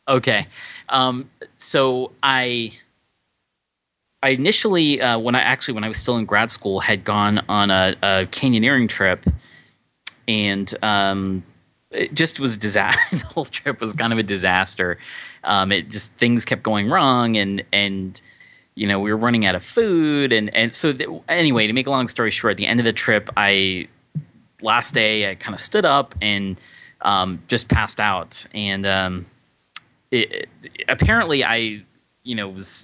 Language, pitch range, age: English, 95-120 Hz, 30-49